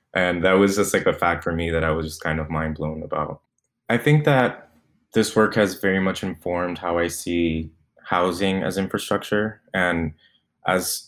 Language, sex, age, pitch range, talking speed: English, male, 20-39, 80-90 Hz, 190 wpm